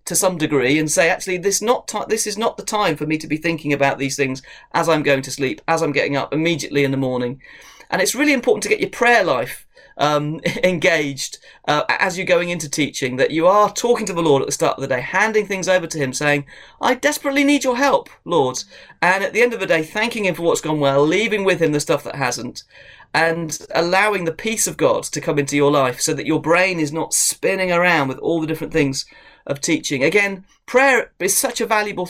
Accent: British